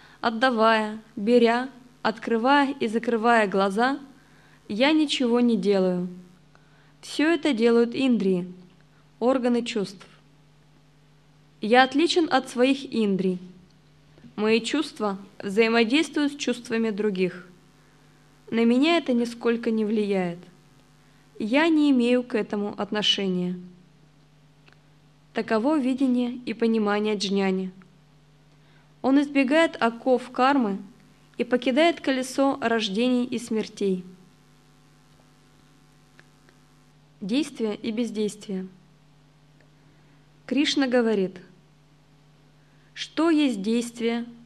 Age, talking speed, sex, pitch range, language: 20-39, 85 wpm, female, 155-245 Hz, Russian